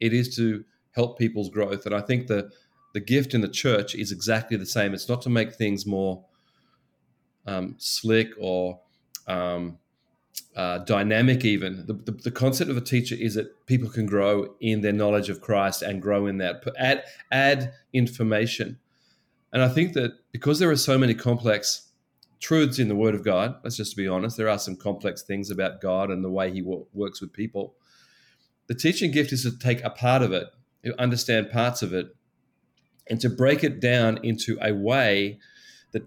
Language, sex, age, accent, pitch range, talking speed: English, male, 30-49, Australian, 105-125 Hz, 190 wpm